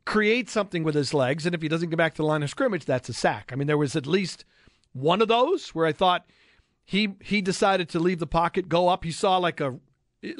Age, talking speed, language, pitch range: 40-59, 260 wpm, English, 130-180 Hz